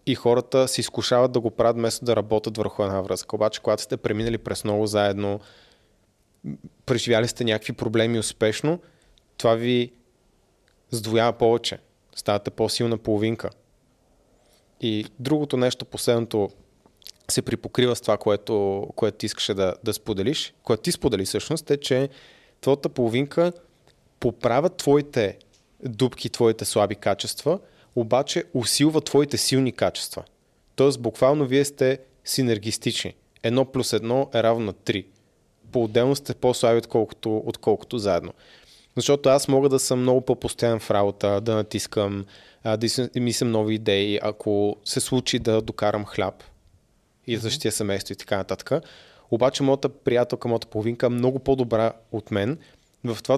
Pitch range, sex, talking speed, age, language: 110-130 Hz, male, 140 wpm, 30-49, Bulgarian